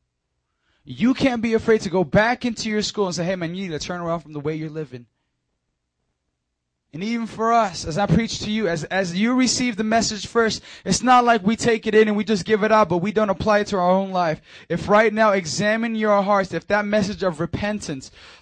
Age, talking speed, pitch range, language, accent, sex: 20-39, 240 wpm, 160-225 Hz, English, American, male